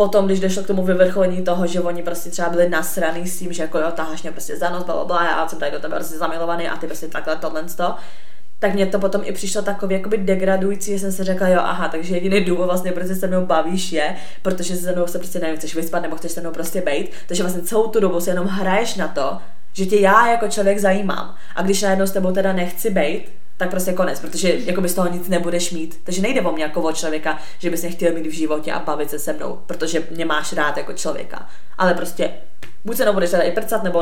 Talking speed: 250 wpm